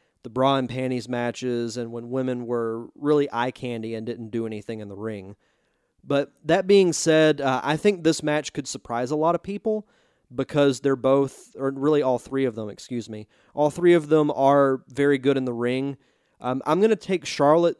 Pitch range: 125-150 Hz